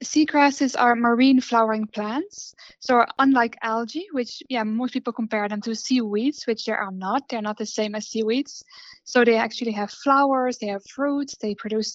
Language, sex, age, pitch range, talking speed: English, female, 10-29, 220-255 Hz, 180 wpm